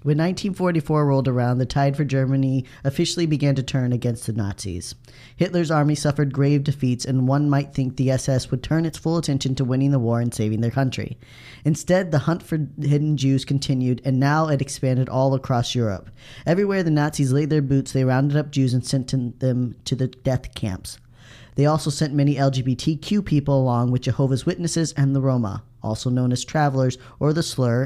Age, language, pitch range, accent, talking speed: 10-29, English, 125-145 Hz, American, 195 wpm